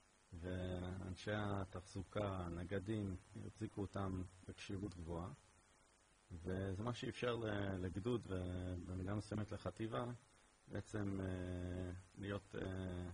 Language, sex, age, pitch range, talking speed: English, male, 40-59, 90-105 Hz, 90 wpm